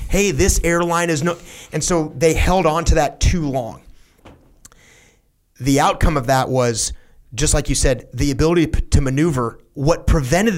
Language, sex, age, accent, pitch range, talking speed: English, male, 30-49, American, 120-155 Hz, 165 wpm